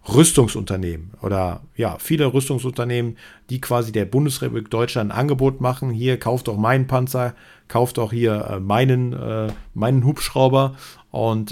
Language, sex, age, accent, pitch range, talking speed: German, male, 40-59, German, 105-130 Hz, 140 wpm